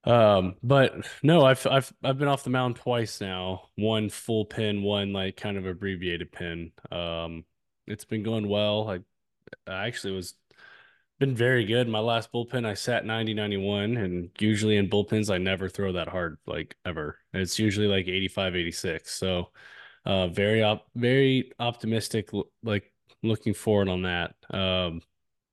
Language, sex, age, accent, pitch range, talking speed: English, male, 20-39, American, 100-120 Hz, 160 wpm